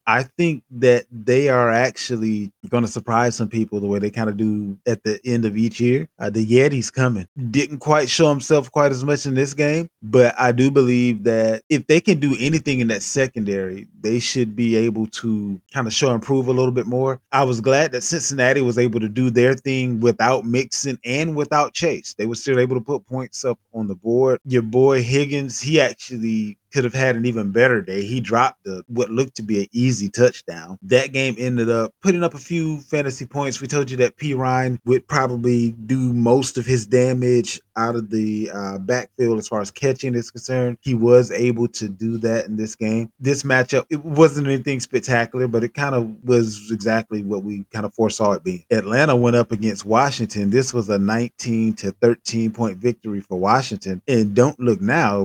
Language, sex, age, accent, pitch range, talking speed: English, male, 20-39, American, 110-135 Hz, 210 wpm